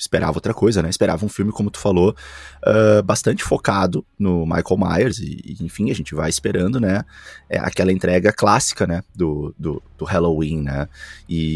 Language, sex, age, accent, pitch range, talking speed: Portuguese, male, 20-39, Brazilian, 85-105 Hz, 160 wpm